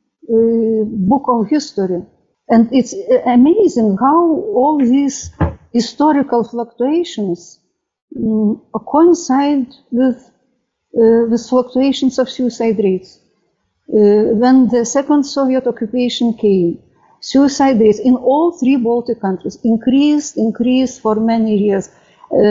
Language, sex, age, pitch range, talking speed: Polish, female, 50-69, 210-270 Hz, 110 wpm